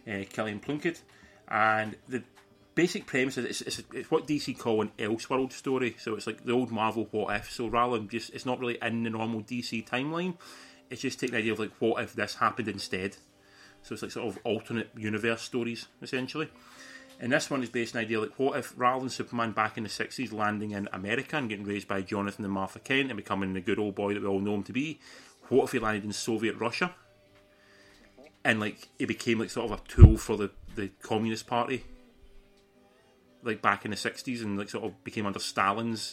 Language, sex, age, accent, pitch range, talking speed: English, male, 30-49, British, 105-125 Hz, 220 wpm